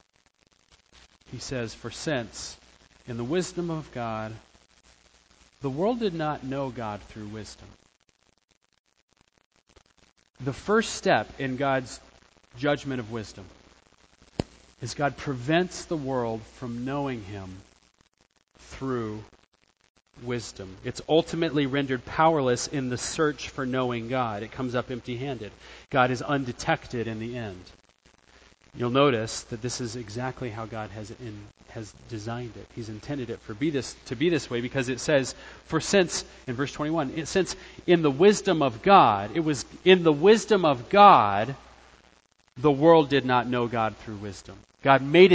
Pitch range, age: 110-150 Hz, 40-59